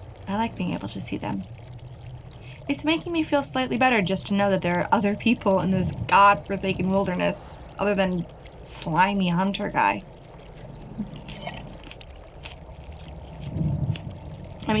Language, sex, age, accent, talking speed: English, female, 20-39, American, 125 wpm